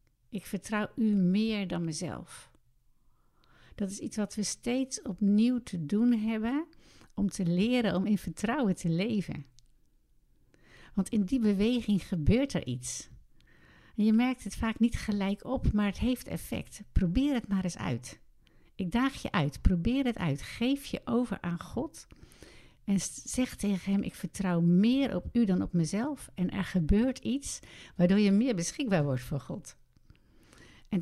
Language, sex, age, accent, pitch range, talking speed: Dutch, female, 60-79, Dutch, 180-230 Hz, 160 wpm